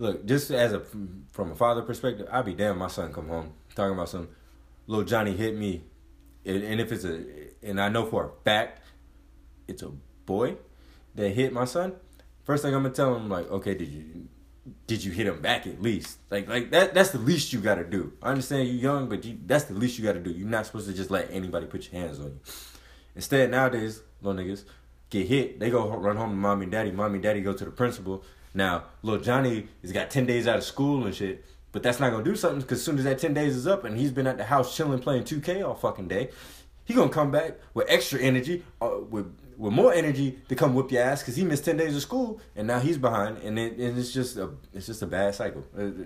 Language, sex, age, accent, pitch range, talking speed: English, male, 20-39, American, 90-125 Hz, 250 wpm